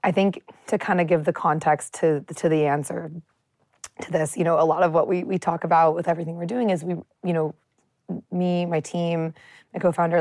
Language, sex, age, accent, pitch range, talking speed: English, female, 20-39, American, 155-180 Hz, 215 wpm